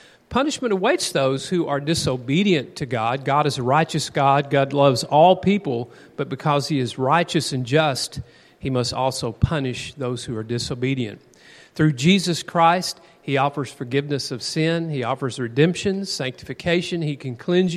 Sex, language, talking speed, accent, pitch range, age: male, English, 160 wpm, American, 130-170 Hz, 40-59